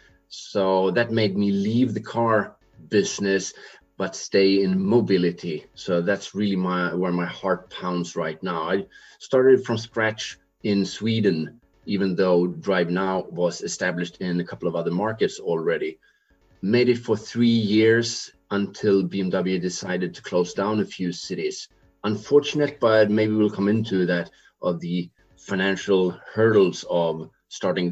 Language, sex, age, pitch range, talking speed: English, male, 30-49, 90-110 Hz, 145 wpm